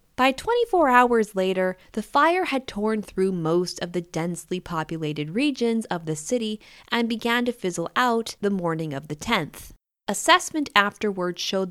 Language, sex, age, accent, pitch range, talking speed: English, female, 10-29, American, 170-240 Hz, 160 wpm